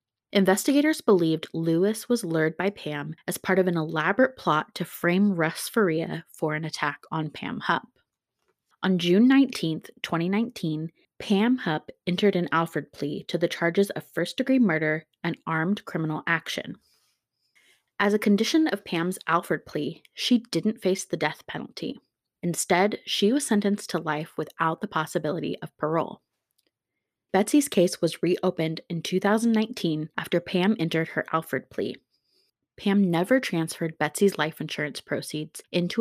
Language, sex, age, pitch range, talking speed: English, female, 20-39, 160-200 Hz, 145 wpm